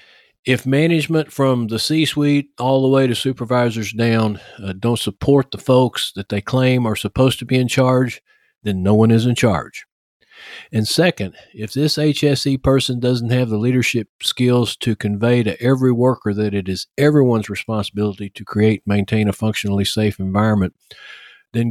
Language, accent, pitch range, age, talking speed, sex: English, American, 100-130 Hz, 50-69, 165 wpm, male